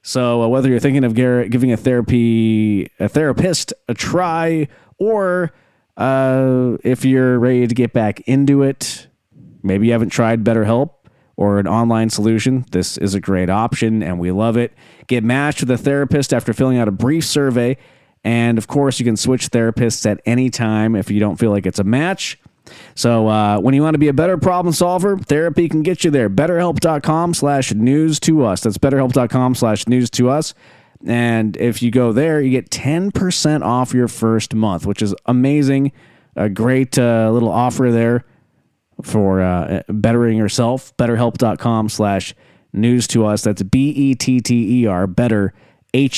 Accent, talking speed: American, 175 wpm